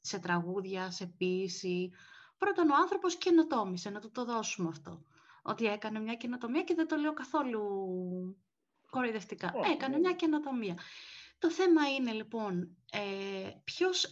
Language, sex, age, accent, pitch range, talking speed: Greek, female, 30-49, native, 195-260 Hz, 130 wpm